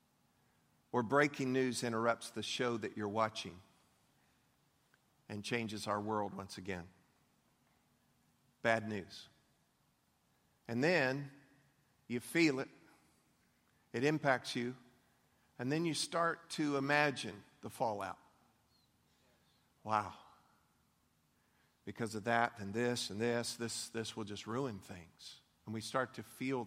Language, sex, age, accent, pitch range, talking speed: English, male, 50-69, American, 110-140 Hz, 115 wpm